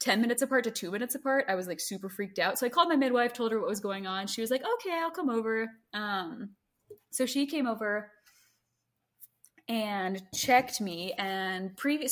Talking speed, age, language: 205 wpm, 20-39, English